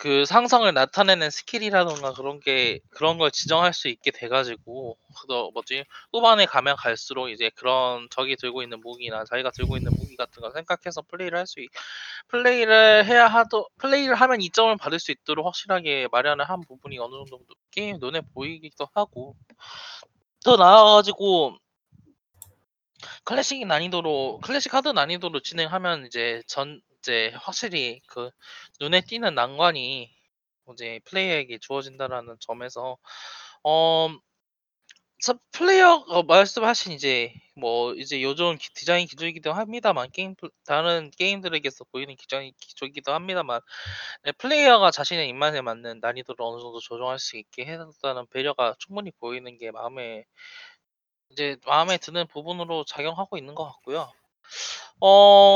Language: Korean